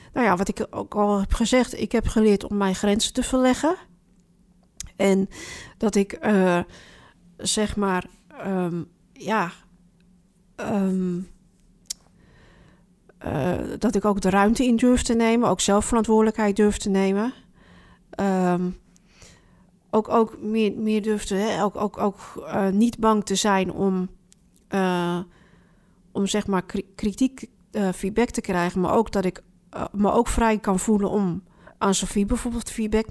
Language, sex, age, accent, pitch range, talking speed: Dutch, female, 40-59, Dutch, 185-220 Hz, 140 wpm